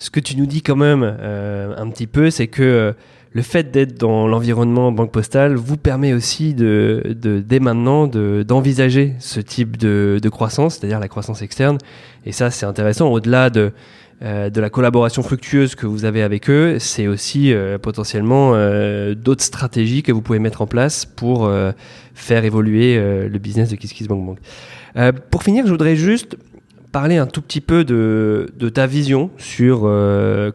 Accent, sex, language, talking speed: French, male, English, 190 wpm